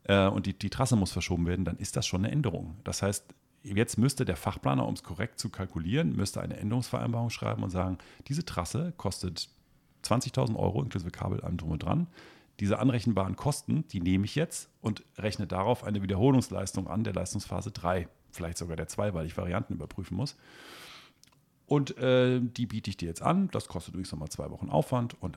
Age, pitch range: 40-59, 90-115 Hz